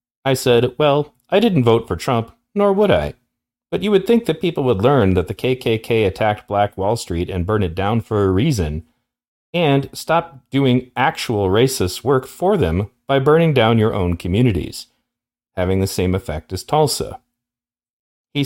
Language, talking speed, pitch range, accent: English, 175 wpm, 95-125 Hz, American